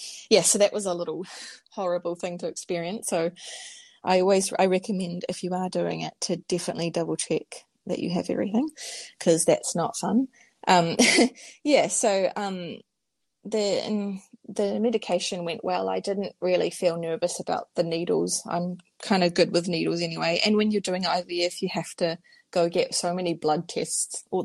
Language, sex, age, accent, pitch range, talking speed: English, female, 20-39, Australian, 175-220 Hz, 175 wpm